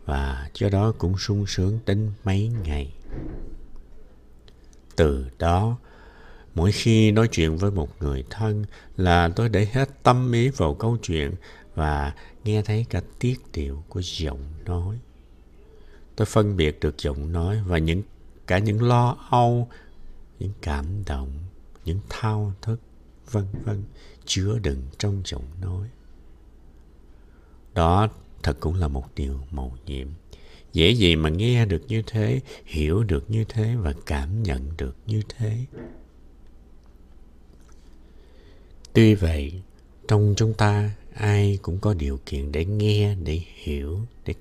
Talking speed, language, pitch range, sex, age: 140 wpm, Vietnamese, 70-105 Hz, male, 60-79